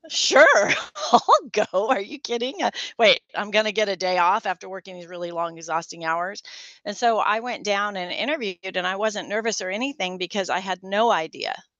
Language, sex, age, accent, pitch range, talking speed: English, female, 40-59, American, 170-210 Hz, 200 wpm